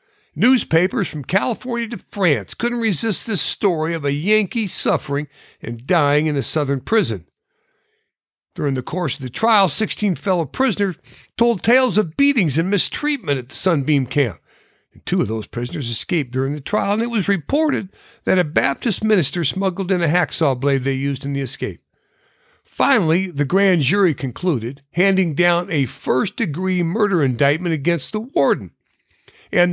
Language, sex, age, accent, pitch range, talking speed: English, male, 60-79, American, 140-210 Hz, 160 wpm